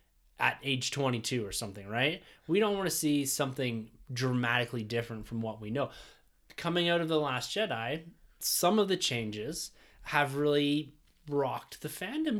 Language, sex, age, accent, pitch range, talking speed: English, male, 20-39, American, 120-160 Hz, 160 wpm